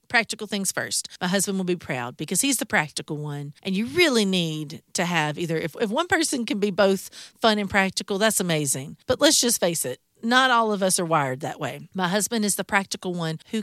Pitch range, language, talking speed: 180-240 Hz, English, 230 wpm